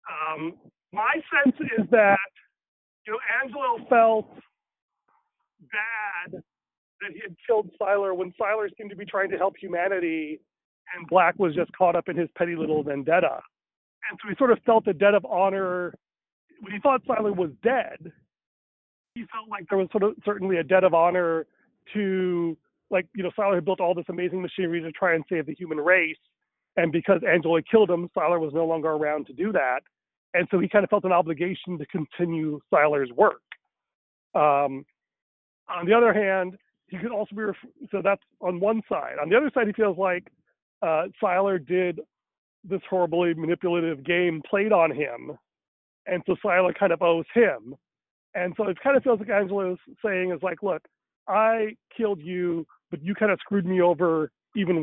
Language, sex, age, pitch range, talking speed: English, male, 40-59, 170-205 Hz, 185 wpm